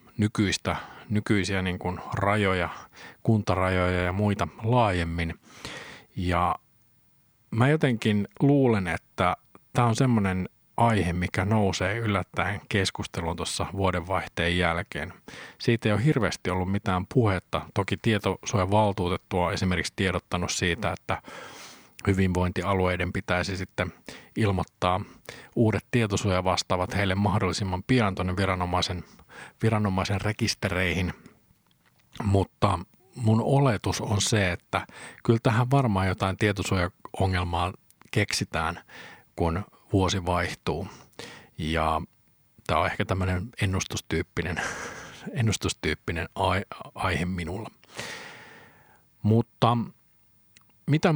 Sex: male